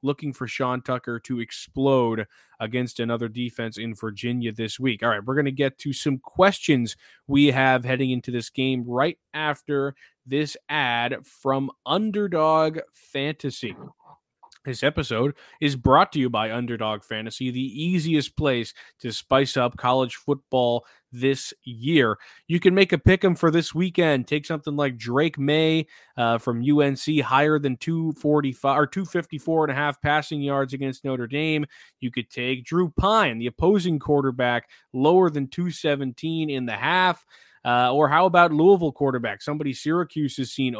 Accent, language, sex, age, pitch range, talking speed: American, English, male, 20-39, 125-155 Hz, 160 wpm